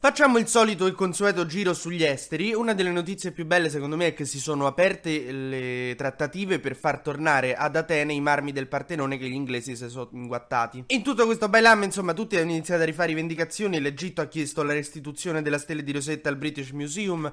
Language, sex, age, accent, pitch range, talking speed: Italian, male, 20-39, native, 140-175 Hz, 210 wpm